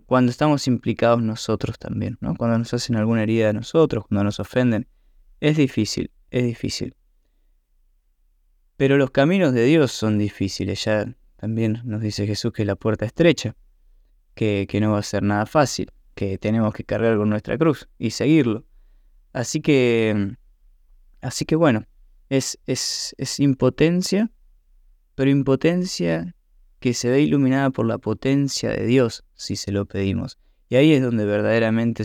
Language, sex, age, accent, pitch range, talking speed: Spanish, male, 20-39, Argentinian, 105-135 Hz, 155 wpm